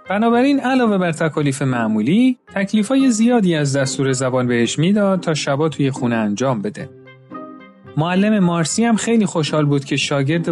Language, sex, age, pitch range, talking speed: Persian, male, 30-49, 130-180 Hz, 150 wpm